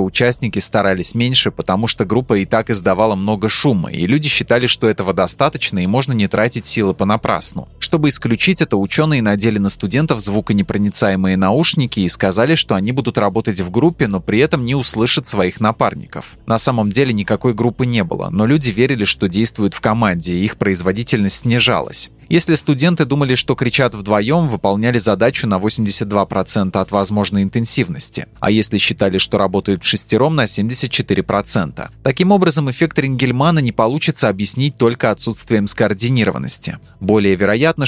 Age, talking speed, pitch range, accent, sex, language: 20-39, 155 wpm, 100-130 Hz, native, male, Russian